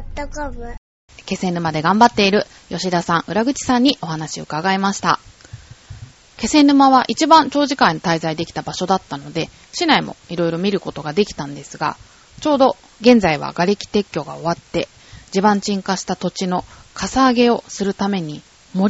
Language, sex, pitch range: Japanese, female, 160-220 Hz